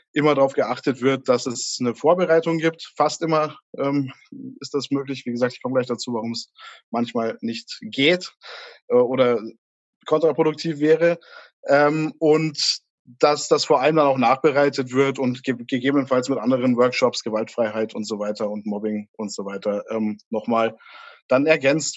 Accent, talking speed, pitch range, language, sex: German, 160 wpm, 125-155 Hz, German, male